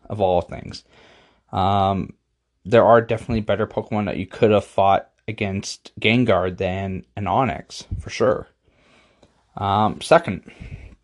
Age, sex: 20-39, male